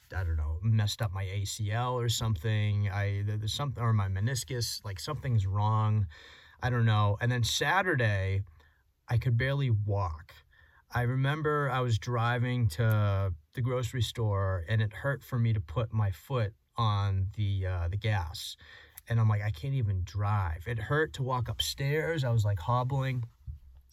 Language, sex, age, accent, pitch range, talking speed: English, male, 30-49, American, 100-125 Hz, 165 wpm